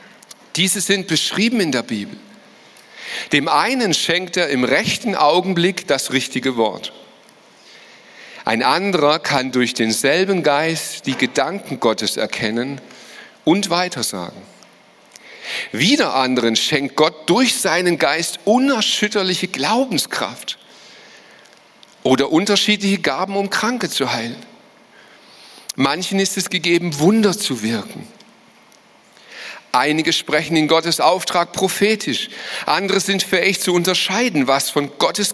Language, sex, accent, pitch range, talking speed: German, male, German, 135-190 Hz, 110 wpm